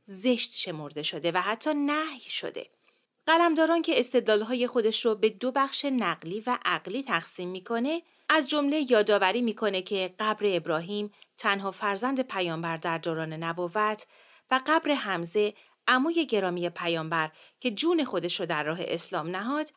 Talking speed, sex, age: 140 wpm, female, 30-49